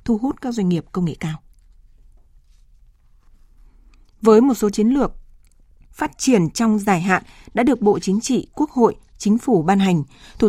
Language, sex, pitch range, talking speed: Vietnamese, female, 185-230 Hz, 170 wpm